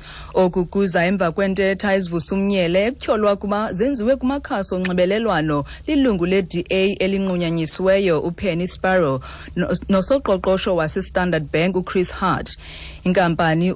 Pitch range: 175-205 Hz